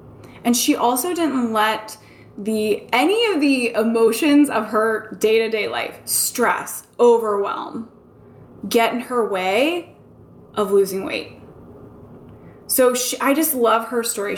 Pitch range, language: 205-265 Hz, English